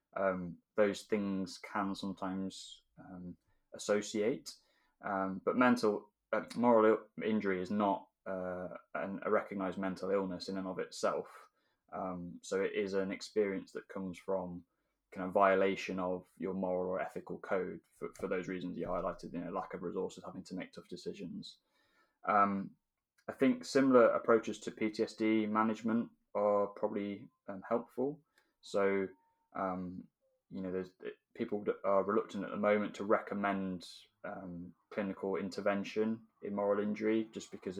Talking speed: 150 wpm